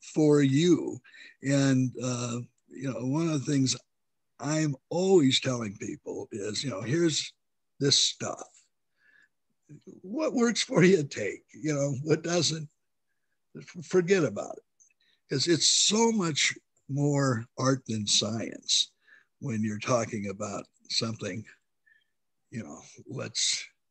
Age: 60-79